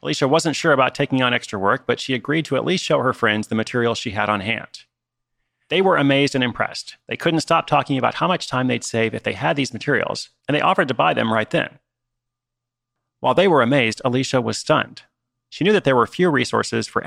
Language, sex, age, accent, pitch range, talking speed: English, male, 30-49, American, 120-140 Hz, 230 wpm